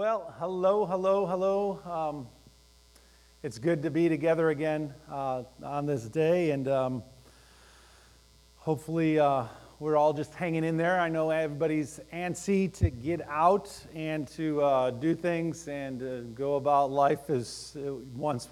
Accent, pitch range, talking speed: American, 140-180 Hz, 145 wpm